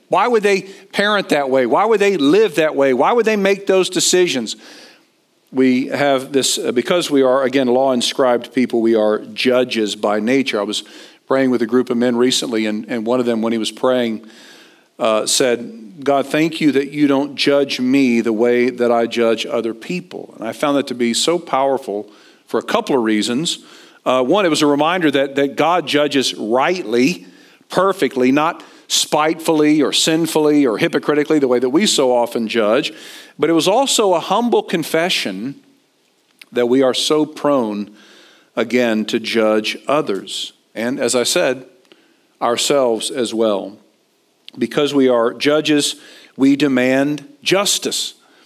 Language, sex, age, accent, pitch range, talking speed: English, male, 50-69, American, 120-165 Hz, 165 wpm